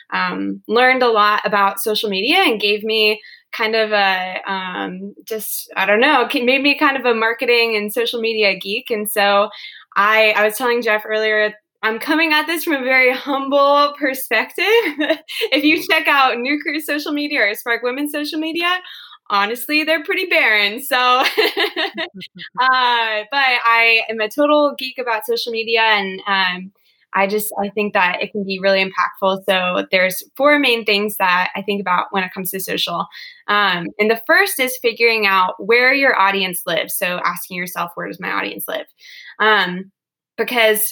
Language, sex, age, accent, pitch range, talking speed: English, female, 20-39, American, 205-265 Hz, 175 wpm